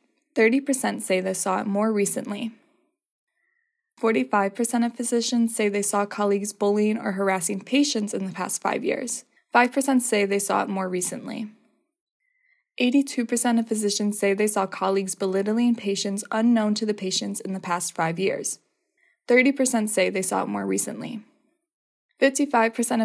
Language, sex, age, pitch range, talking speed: English, female, 20-39, 200-240 Hz, 145 wpm